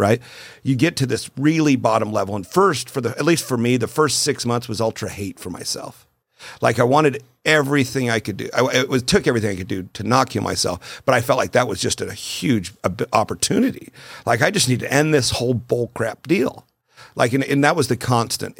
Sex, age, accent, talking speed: male, 50-69, American, 230 wpm